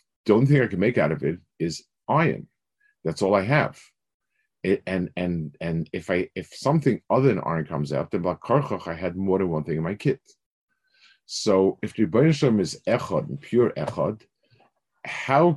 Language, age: English, 50-69